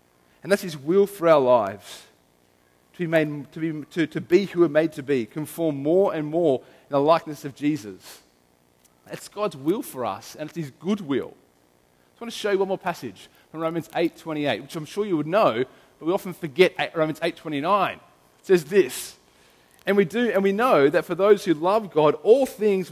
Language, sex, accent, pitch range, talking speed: English, male, Australian, 120-175 Hz, 210 wpm